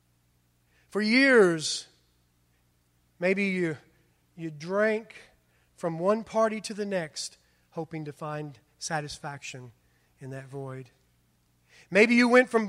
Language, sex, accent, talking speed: English, male, American, 110 wpm